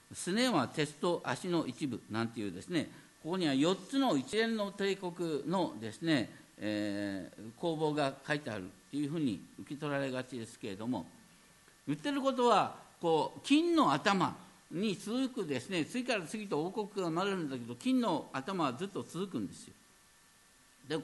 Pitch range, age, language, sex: 125-215 Hz, 50-69, Japanese, male